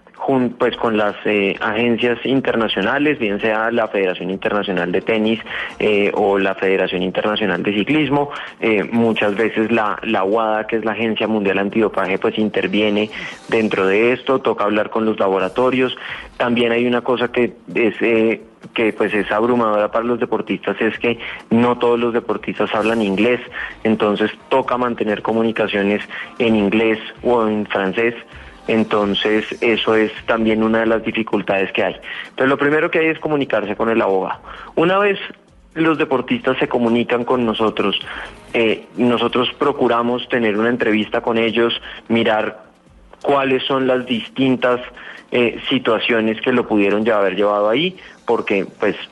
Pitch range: 105-120 Hz